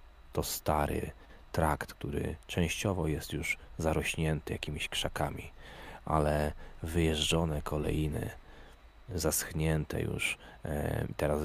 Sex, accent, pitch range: male, native, 70-80 Hz